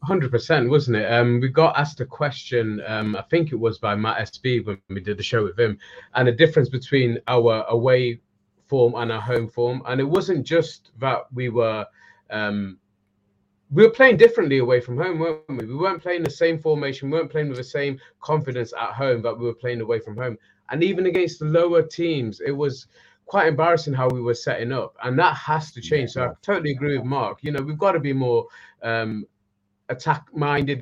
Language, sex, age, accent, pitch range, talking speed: English, male, 20-39, British, 115-155 Hz, 215 wpm